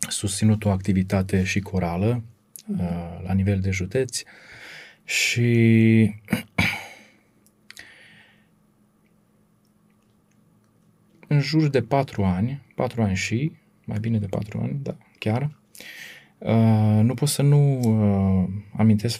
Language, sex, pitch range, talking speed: Romanian, male, 95-115 Hz, 95 wpm